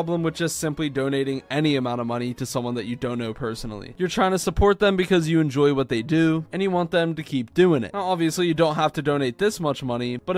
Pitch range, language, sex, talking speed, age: 130-170 Hz, English, male, 260 wpm, 20-39